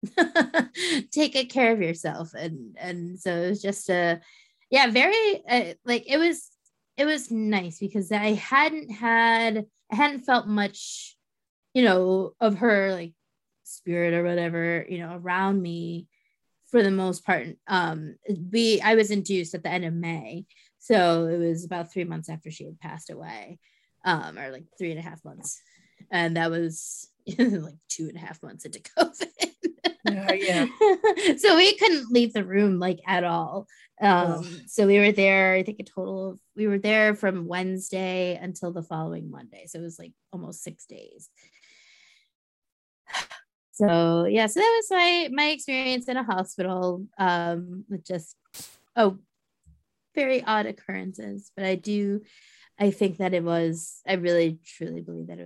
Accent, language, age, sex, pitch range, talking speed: American, English, 20-39, female, 170-240 Hz, 165 wpm